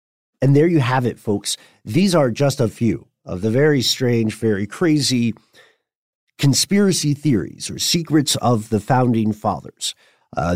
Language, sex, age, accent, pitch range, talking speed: English, male, 40-59, American, 100-130 Hz, 150 wpm